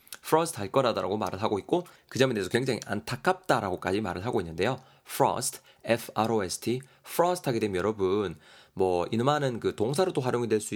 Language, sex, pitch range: Korean, male, 100-140 Hz